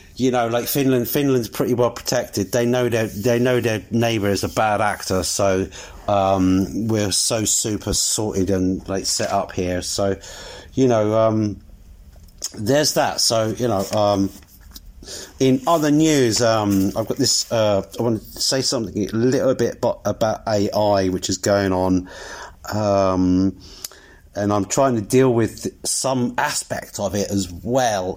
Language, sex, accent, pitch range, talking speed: English, male, British, 95-120 Hz, 160 wpm